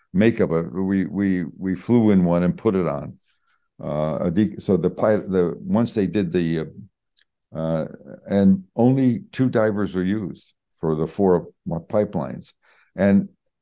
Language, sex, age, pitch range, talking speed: English, male, 60-79, 90-110 Hz, 140 wpm